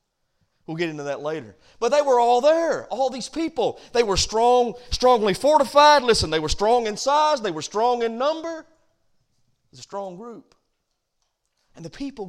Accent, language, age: American, English, 40-59